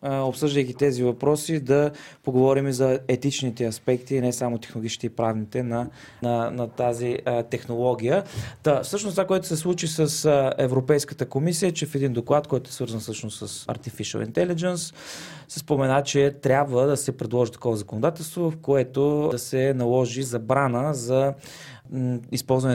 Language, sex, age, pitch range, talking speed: Bulgarian, male, 20-39, 120-145 Hz, 155 wpm